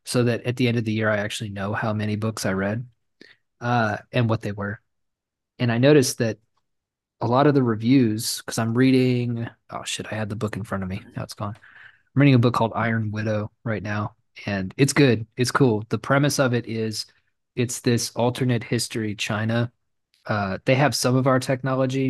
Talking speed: 210 wpm